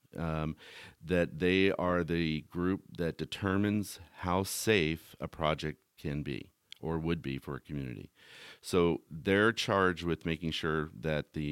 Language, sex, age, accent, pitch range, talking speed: English, male, 40-59, American, 75-90 Hz, 145 wpm